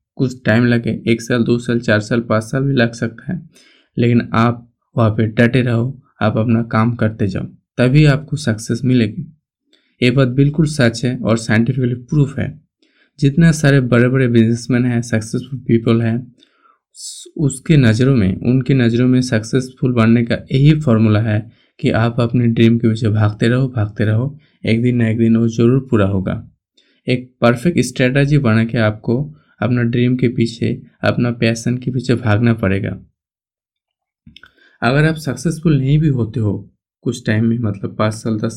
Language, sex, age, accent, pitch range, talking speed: Hindi, male, 20-39, native, 115-130 Hz, 170 wpm